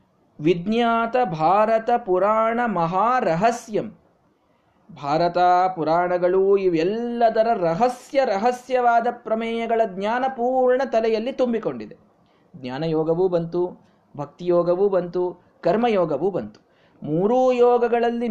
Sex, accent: male, native